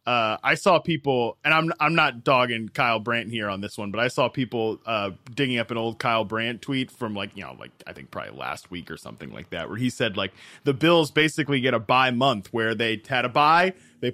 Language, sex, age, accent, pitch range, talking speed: English, male, 20-39, American, 120-165 Hz, 245 wpm